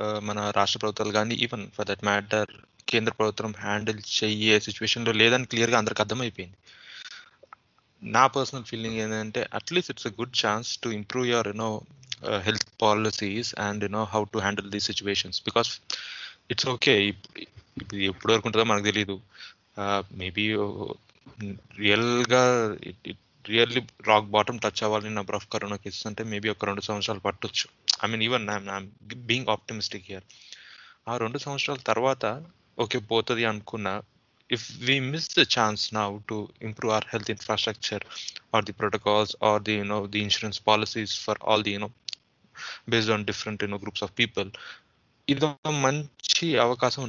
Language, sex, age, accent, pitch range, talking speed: Telugu, male, 20-39, native, 105-120 Hz, 150 wpm